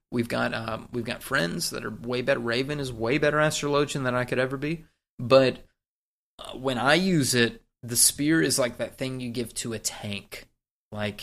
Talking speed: 205 wpm